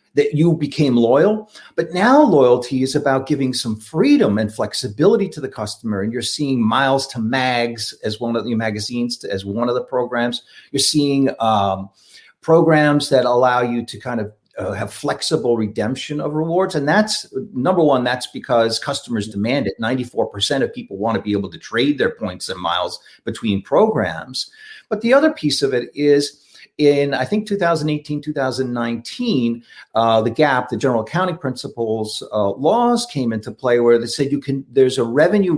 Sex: male